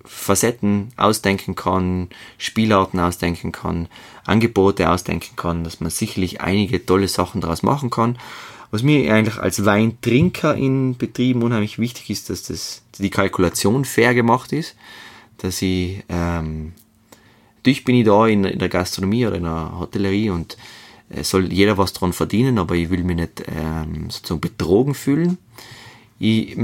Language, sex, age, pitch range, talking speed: German, male, 20-39, 90-115 Hz, 150 wpm